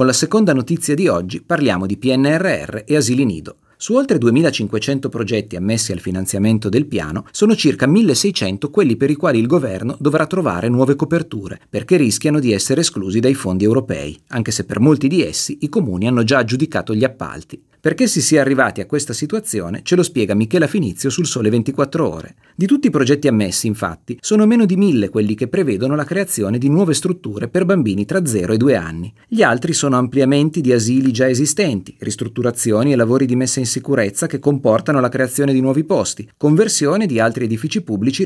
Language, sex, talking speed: Italian, male, 195 wpm